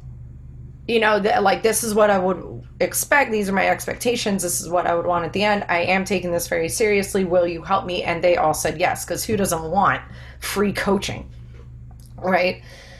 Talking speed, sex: 205 wpm, female